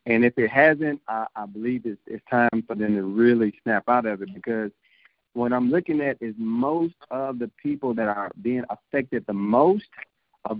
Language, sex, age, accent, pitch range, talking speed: English, male, 50-69, American, 105-135 Hz, 200 wpm